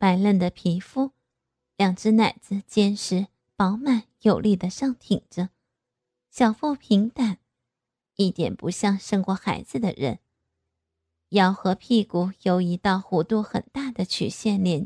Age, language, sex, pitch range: 20-39, Chinese, female, 170-235 Hz